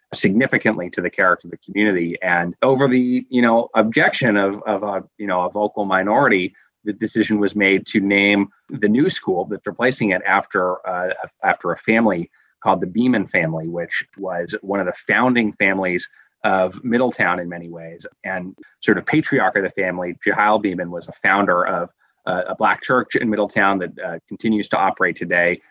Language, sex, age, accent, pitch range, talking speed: English, male, 30-49, American, 90-110 Hz, 185 wpm